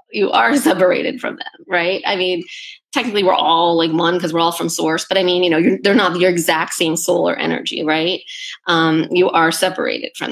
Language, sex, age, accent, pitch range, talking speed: English, female, 20-39, American, 170-205 Hz, 220 wpm